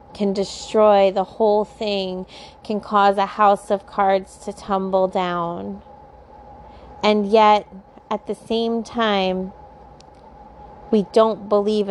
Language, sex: English, female